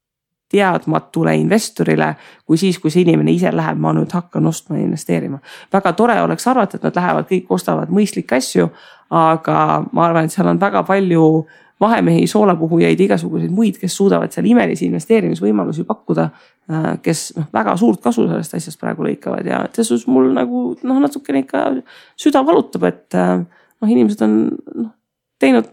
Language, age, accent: English, 30-49, Finnish